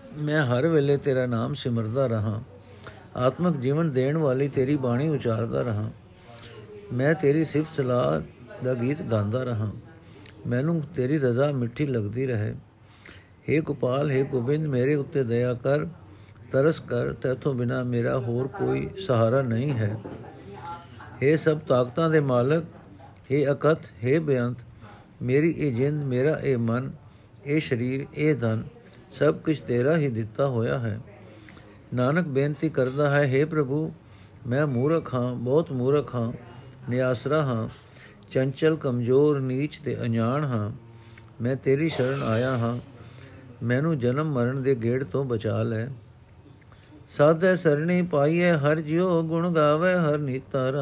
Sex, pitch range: male, 115-150 Hz